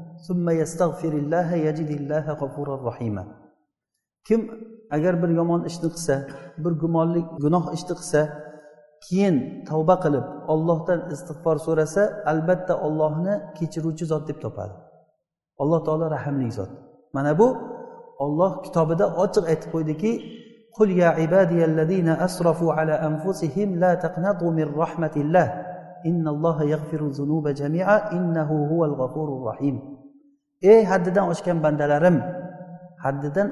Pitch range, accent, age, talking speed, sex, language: 150-190 Hz, Turkish, 50-69, 105 wpm, male, Russian